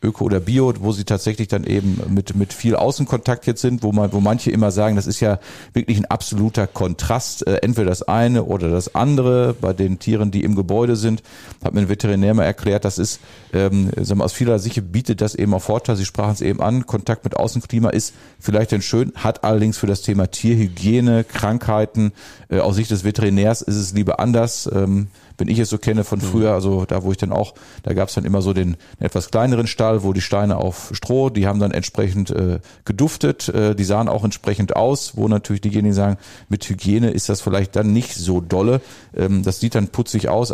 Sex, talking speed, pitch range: male, 215 wpm, 100-110 Hz